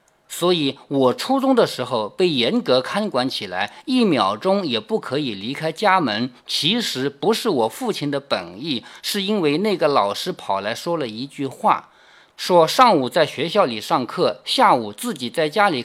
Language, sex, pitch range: Chinese, male, 125-205 Hz